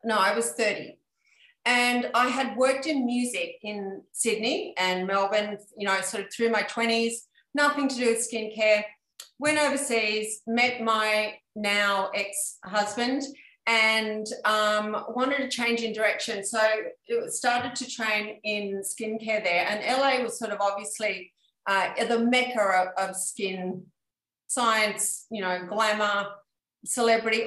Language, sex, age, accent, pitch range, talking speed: English, female, 40-59, Australian, 205-250 Hz, 140 wpm